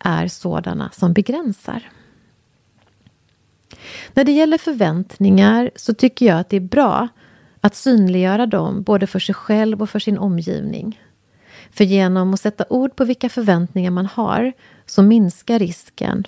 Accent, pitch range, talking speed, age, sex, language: Swedish, 180-225 Hz, 145 wpm, 30-49, female, English